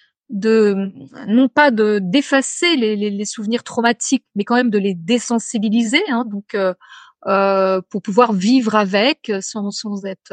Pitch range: 210-260 Hz